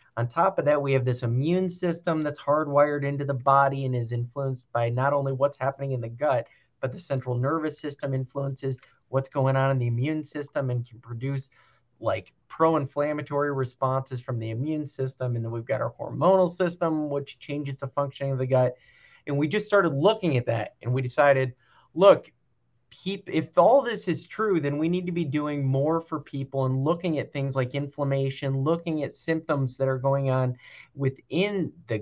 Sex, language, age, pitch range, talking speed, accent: male, English, 30-49, 130-155 Hz, 190 wpm, American